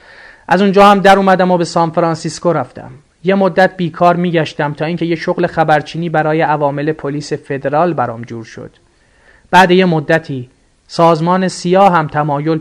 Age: 30-49